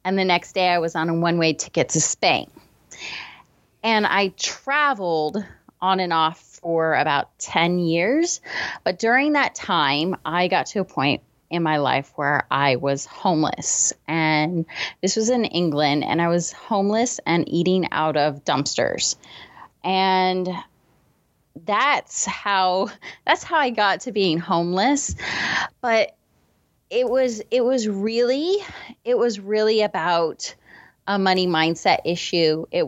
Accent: American